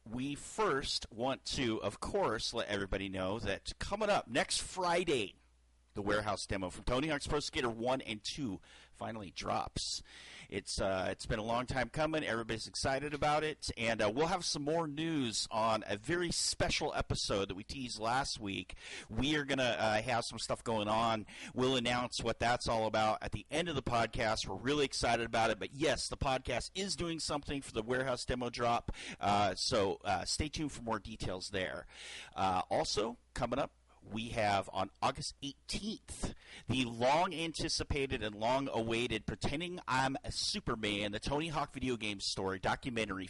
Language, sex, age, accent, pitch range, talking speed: English, male, 40-59, American, 105-135 Hz, 180 wpm